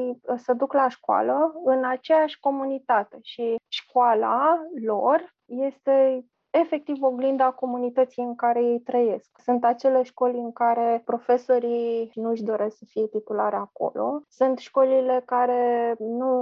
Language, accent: Romanian, native